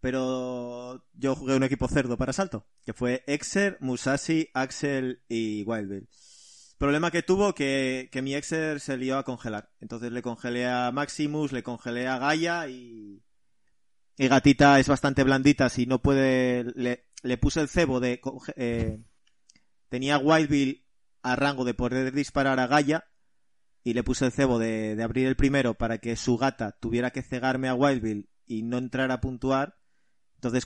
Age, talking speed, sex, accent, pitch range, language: 30-49, 165 wpm, male, Spanish, 120-135 Hz, Spanish